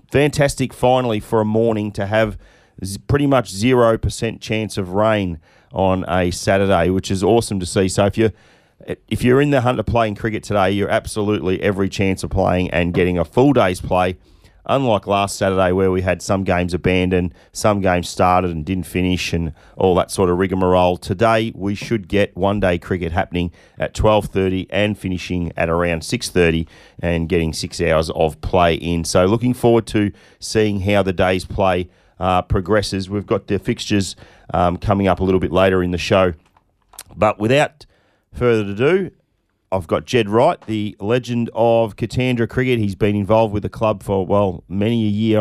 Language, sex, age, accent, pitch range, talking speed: English, male, 30-49, Australian, 90-110 Hz, 180 wpm